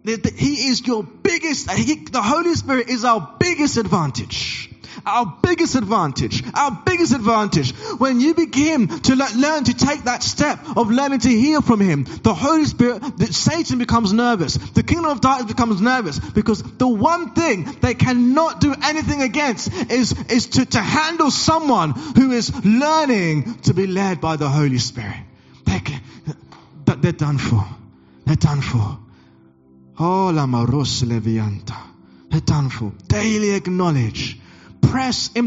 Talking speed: 130 wpm